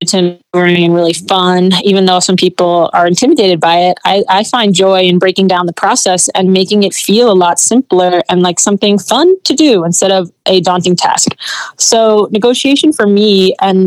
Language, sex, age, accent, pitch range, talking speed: English, female, 30-49, American, 180-205 Hz, 185 wpm